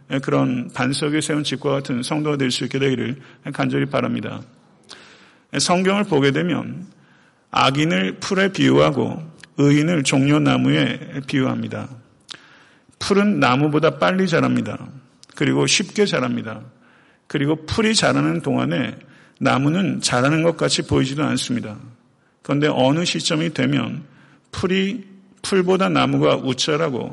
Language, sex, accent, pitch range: Korean, male, native, 130-165 Hz